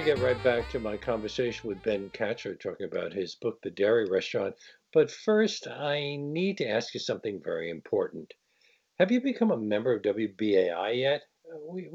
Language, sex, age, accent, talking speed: English, male, 60-79, American, 175 wpm